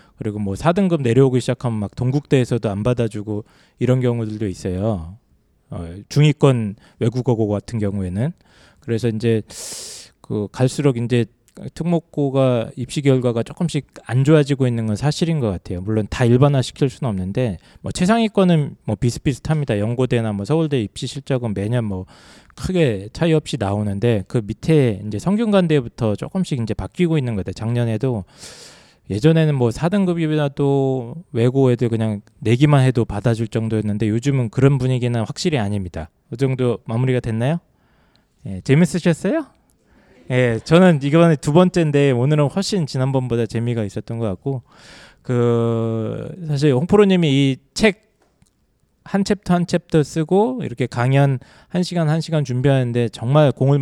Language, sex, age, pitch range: Korean, male, 20-39, 115-155 Hz